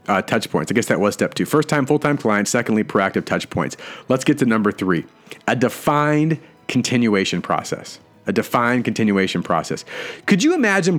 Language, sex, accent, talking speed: English, male, American, 180 wpm